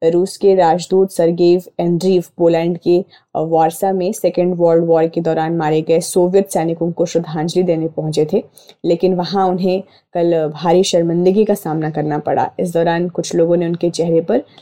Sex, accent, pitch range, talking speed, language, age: female, native, 165-190 Hz, 170 wpm, Hindi, 20-39